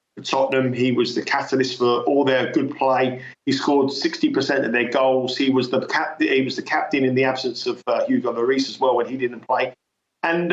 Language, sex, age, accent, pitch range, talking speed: English, male, 50-69, British, 130-170 Hz, 200 wpm